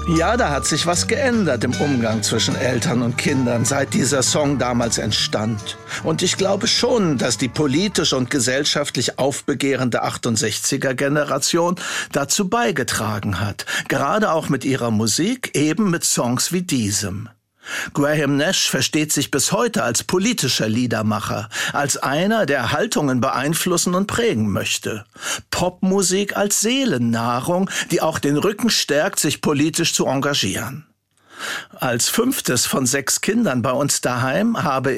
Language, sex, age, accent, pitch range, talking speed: German, male, 60-79, German, 125-180 Hz, 135 wpm